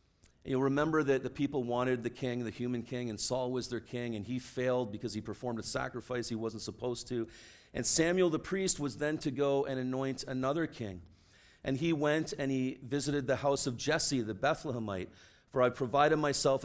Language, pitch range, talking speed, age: English, 115-140 Hz, 200 wpm, 40-59